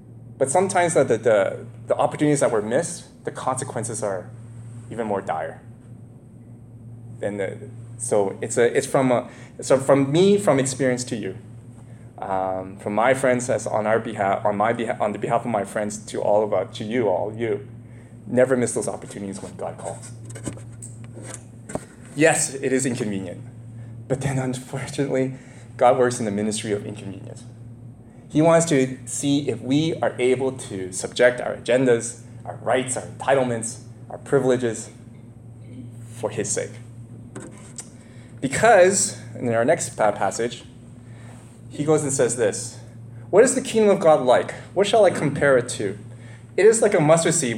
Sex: male